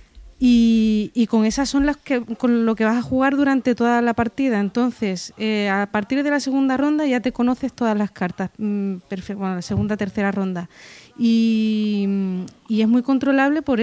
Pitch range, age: 205-250 Hz, 30-49